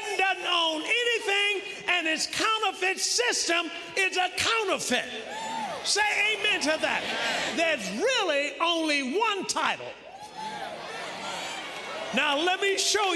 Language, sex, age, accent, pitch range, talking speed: English, male, 40-59, American, 290-375 Hz, 105 wpm